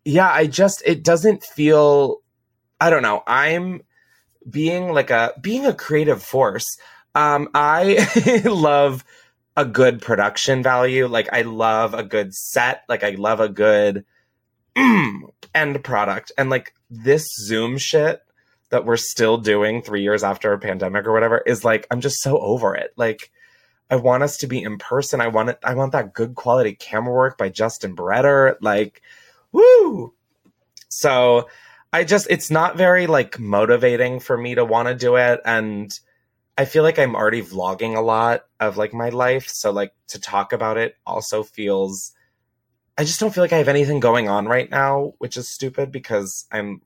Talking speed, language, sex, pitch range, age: 175 wpm, English, male, 115-150 Hz, 20-39